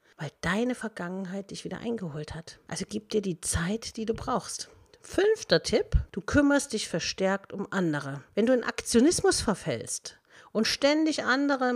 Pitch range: 165-230 Hz